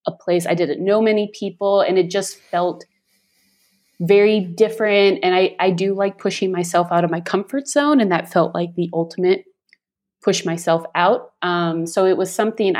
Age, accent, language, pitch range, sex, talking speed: 30-49, American, English, 170-200 Hz, female, 185 wpm